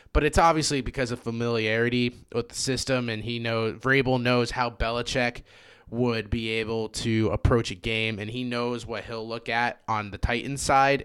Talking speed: 185 wpm